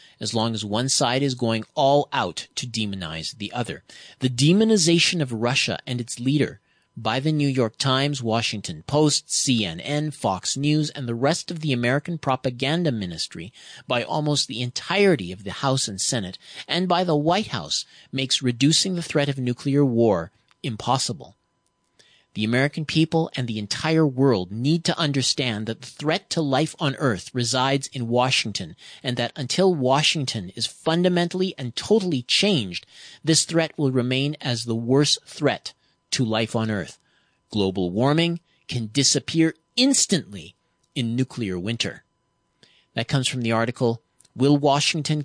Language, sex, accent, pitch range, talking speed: English, male, American, 115-150 Hz, 155 wpm